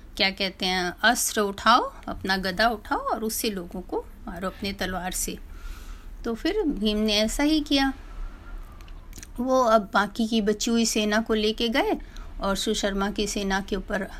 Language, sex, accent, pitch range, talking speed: Hindi, female, native, 210-255 Hz, 165 wpm